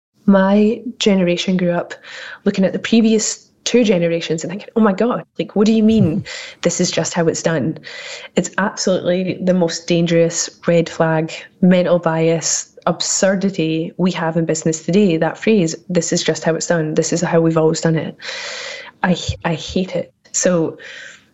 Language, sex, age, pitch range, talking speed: English, female, 20-39, 165-195 Hz, 170 wpm